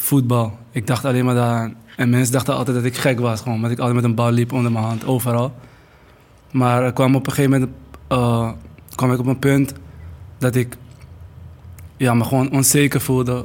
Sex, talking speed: male, 205 wpm